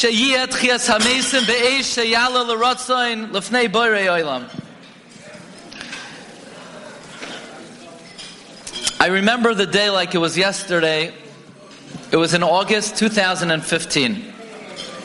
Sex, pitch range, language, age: male, 170-215 Hz, English, 40-59